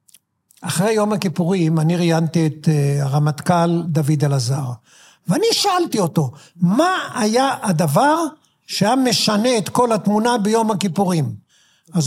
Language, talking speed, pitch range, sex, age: Hebrew, 115 wpm, 160-240 Hz, male, 50-69